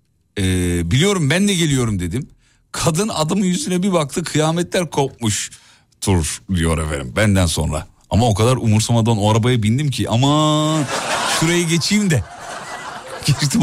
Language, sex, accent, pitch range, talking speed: Turkish, male, native, 95-140 Hz, 135 wpm